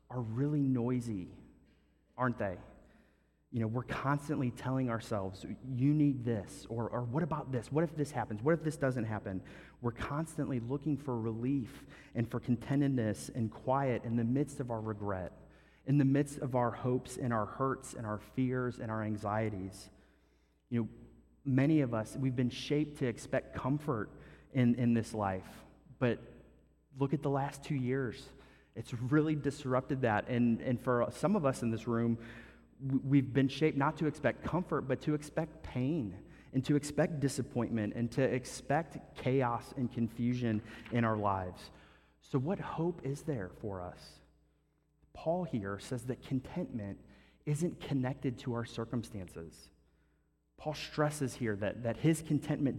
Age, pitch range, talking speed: 30-49, 110-140 Hz, 160 wpm